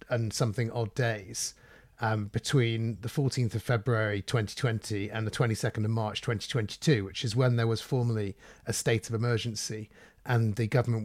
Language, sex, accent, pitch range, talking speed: English, male, British, 110-130 Hz, 165 wpm